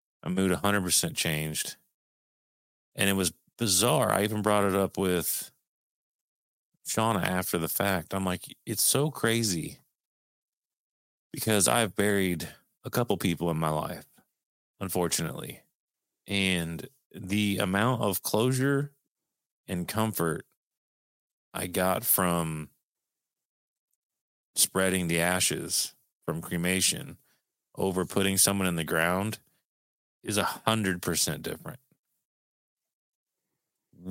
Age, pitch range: 30-49, 85-105 Hz